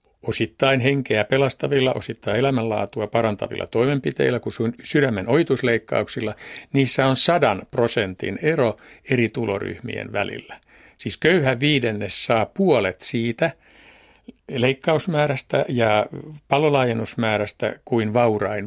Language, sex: Finnish, male